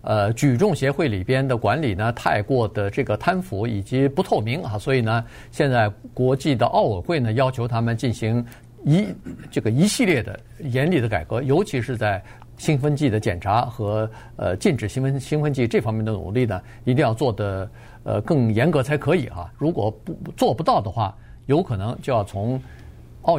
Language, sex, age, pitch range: Chinese, male, 50-69, 110-145 Hz